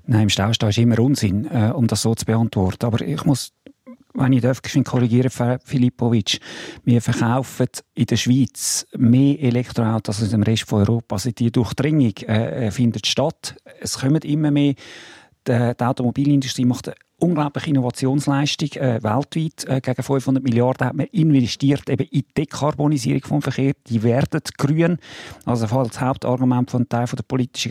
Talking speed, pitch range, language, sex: 165 wpm, 120-145 Hz, German, male